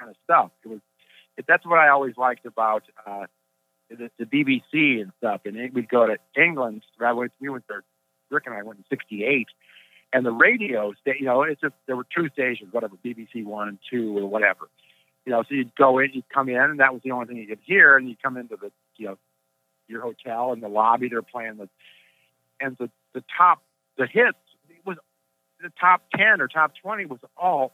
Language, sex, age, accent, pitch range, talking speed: English, male, 50-69, American, 100-140 Hz, 220 wpm